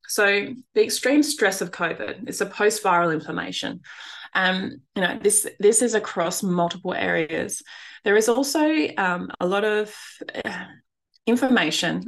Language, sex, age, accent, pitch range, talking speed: English, female, 20-39, Australian, 170-210 Hz, 130 wpm